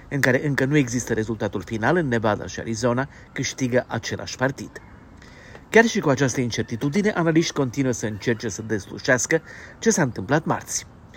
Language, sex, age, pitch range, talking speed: Romanian, male, 40-59, 115-145 Hz, 155 wpm